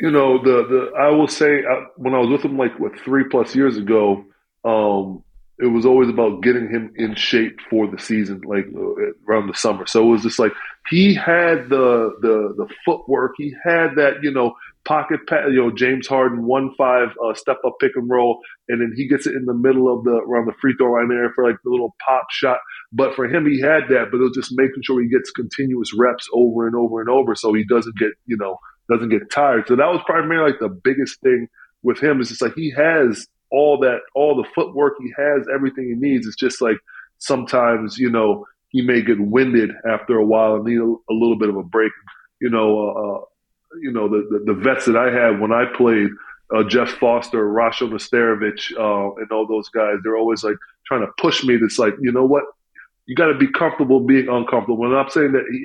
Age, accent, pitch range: 20-39, American, 115-135 Hz